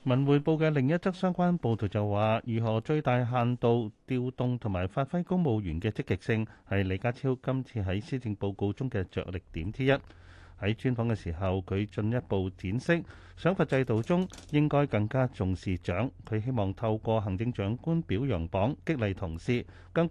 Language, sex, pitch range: Chinese, male, 100-130 Hz